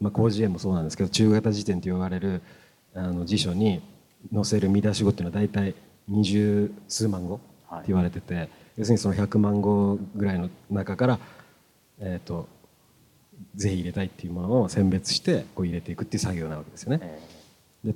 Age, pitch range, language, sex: 40-59, 90-115 Hz, Japanese, male